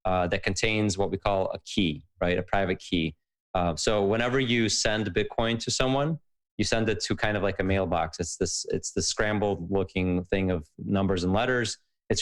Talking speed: 205 wpm